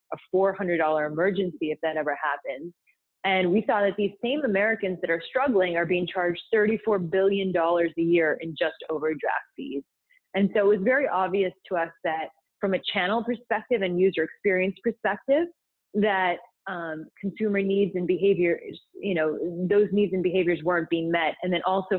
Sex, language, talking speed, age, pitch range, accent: female, English, 170 wpm, 20-39, 160-200 Hz, American